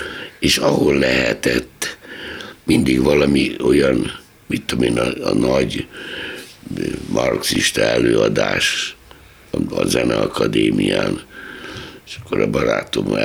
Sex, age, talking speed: male, 60-79, 95 wpm